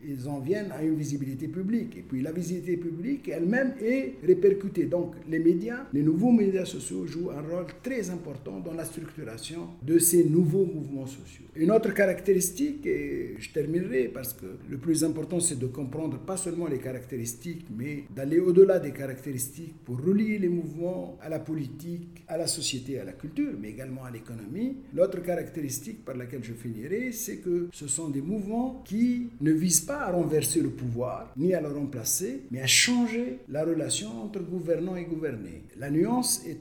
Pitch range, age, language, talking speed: 140-190 Hz, 60-79, English, 180 wpm